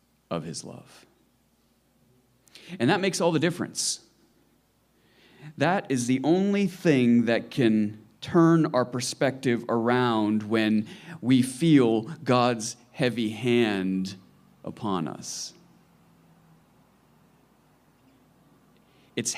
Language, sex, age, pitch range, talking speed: English, male, 40-59, 110-135 Hz, 90 wpm